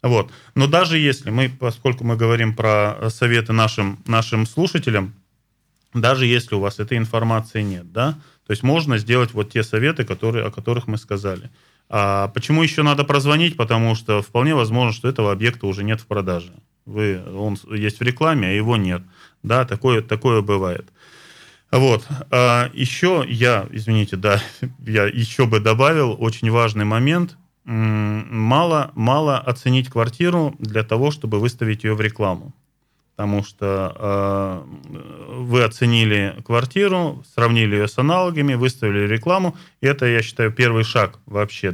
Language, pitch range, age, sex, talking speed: Russian, 105-130 Hz, 20-39, male, 140 wpm